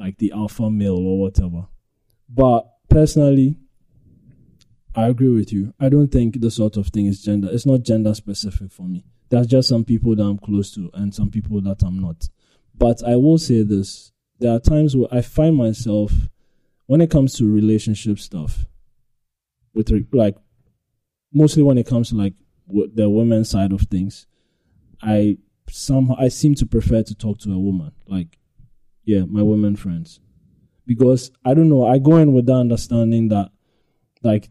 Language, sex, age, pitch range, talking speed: English, male, 20-39, 105-130 Hz, 175 wpm